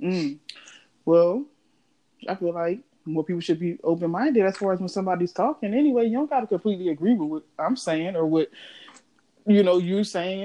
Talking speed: 190 wpm